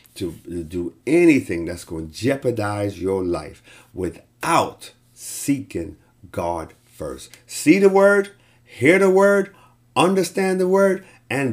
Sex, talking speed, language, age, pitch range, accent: male, 120 wpm, English, 50-69, 100-130 Hz, American